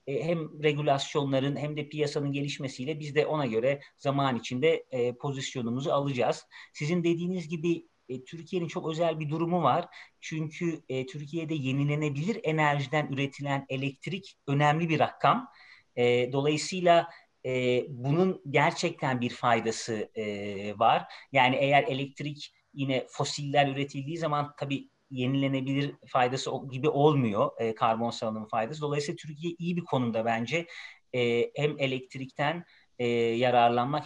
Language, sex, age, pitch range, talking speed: Turkish, male, 30-49, 125-155 Hz, 110 wpm